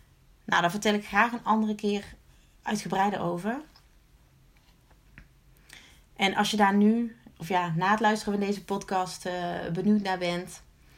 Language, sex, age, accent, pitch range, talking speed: Dutch, female, 30-49, Dutch, 175-210 Hz, 140 wpm